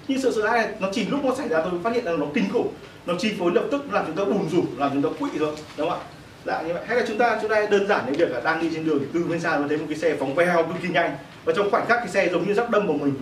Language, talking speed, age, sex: Vietnamese, 350 wpm, 20-39, male